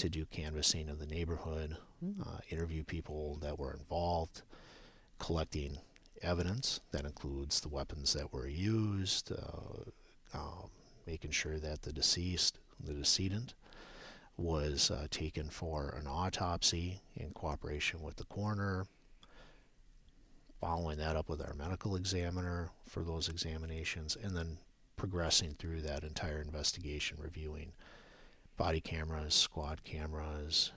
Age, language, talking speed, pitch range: 50-69, English, 125 wpm, 75-90 Hz